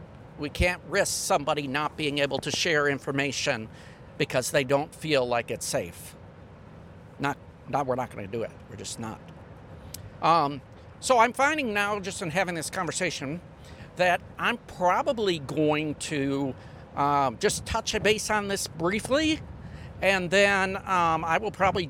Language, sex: English, male